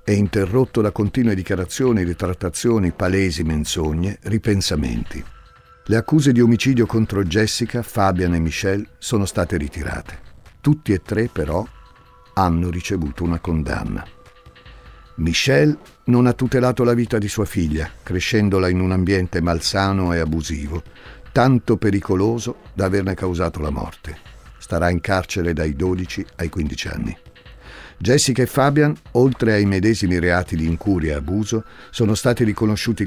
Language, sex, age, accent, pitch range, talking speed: Italian, male, 50-69, native, 85-110 Hz, 135 wpm